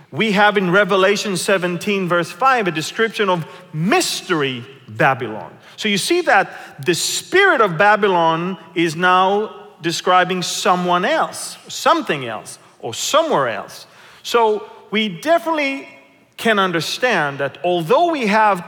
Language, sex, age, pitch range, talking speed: English, male, 40-59, 170-225 Hz, 125 wpm